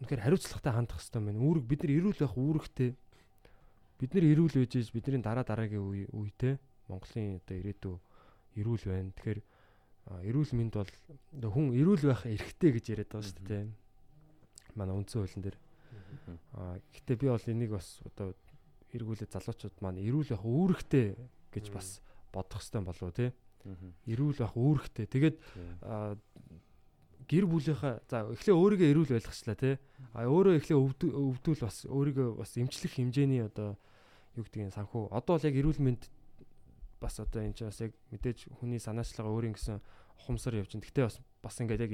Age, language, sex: 20-39, Korean, male